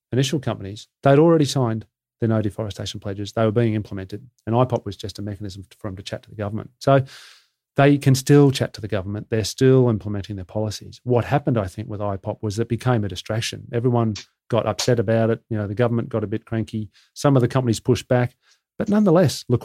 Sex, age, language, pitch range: male, 40-59, English, 110-130 Hz